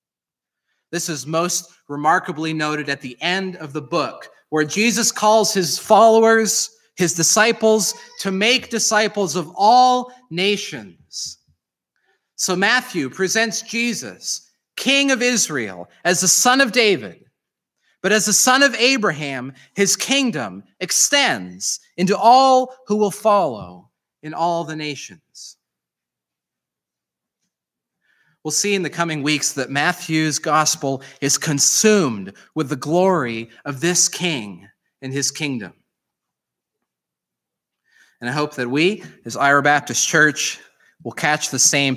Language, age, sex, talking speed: English, 30-49, male, 125 wpm